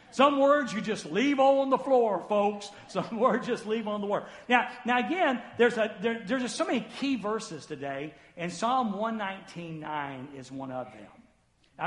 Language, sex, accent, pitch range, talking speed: English, male, American, 200-275 Hz, 200 wpm